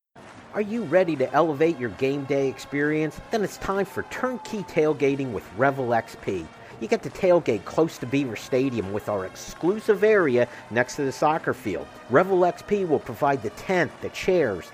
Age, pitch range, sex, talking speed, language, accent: 50-69, 130-170 Hz, male, 175 wpm, English, American